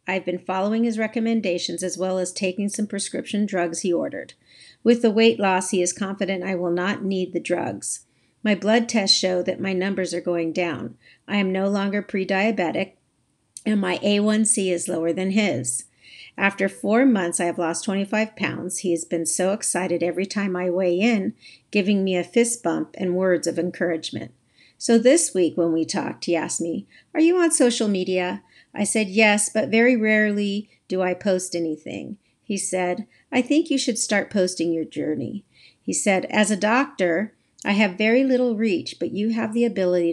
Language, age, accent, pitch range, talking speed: English, 50-69, American, 175-215 Hz, 185 wpm